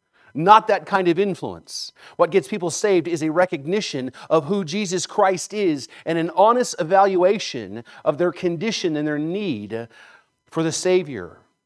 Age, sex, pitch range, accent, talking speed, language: 40-59, male, 135-185 Hz, American, 155 wpm, English